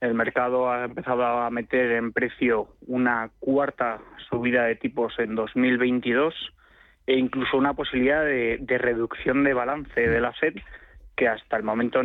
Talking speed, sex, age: 155 wpm, male, 20-39